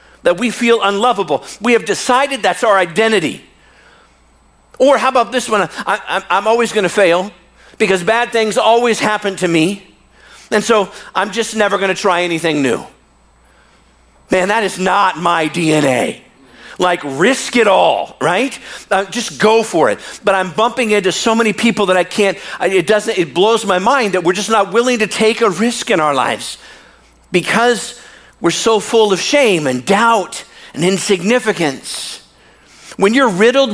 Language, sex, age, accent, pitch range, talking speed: English, male, 50-69, American, 185-230 Hz, 165 wpm